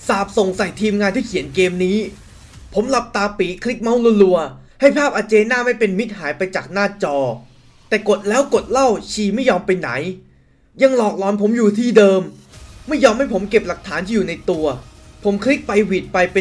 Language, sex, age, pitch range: Thai, male, 20-39, 140-210 Hz